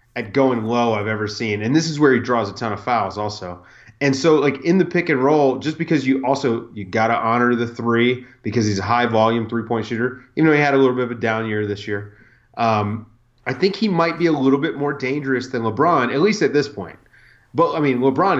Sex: male